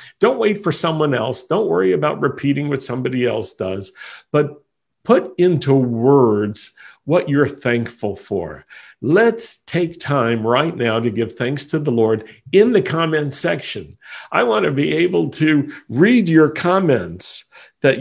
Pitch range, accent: 120-160 Hz, American